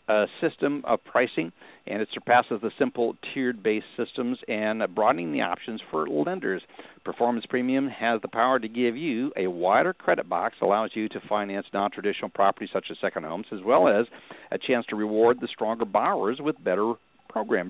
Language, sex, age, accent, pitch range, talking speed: English, male, 60-79, American, 105-125 Hz, 175 wpm